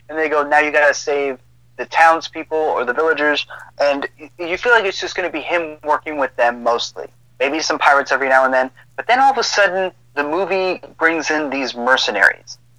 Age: 30-49